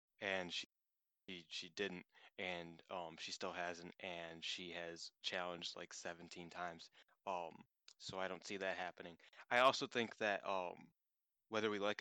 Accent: American